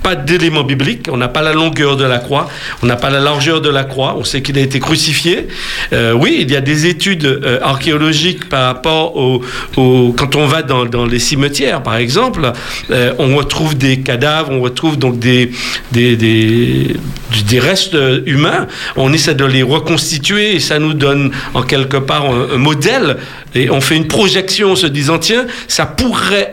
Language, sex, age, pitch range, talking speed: French, male, 50-69, 130-165 Hz, 195 wpm